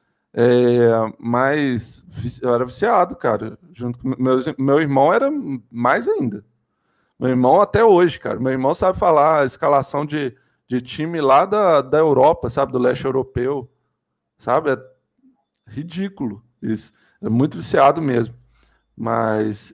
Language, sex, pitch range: Portuguese, male, 120-145 Hz